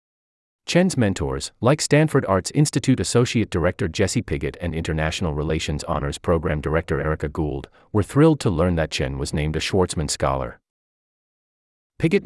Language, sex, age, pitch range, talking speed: English, male, 30-49, 75-115 Hz, 145 wpm